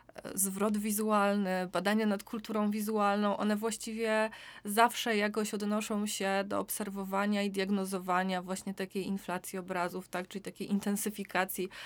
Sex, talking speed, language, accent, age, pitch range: female, 120 wpm, Polish, native, 20-39, 185-215 Hz